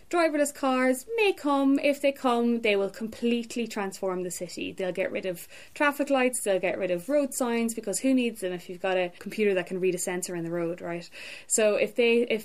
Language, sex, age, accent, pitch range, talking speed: English, female, 20-39, Irish, 175-210 Hz, 225 wpm